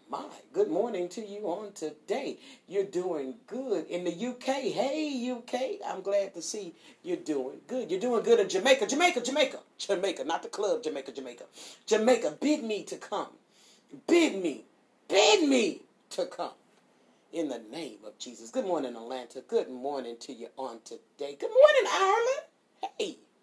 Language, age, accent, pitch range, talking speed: English, 40-59, American, 205-295 Hz, 165 wpm